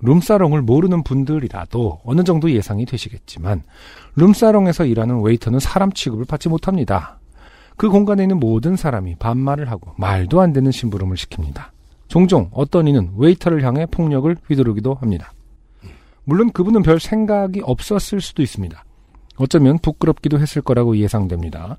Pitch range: 110-160 Hz